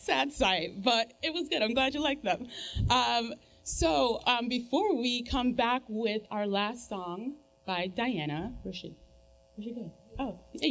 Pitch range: 195-245 Hz